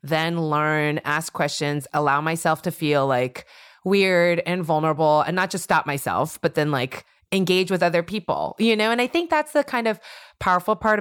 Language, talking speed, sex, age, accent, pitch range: English, 190 wpm, female, 20-39, American, 165-215 Hz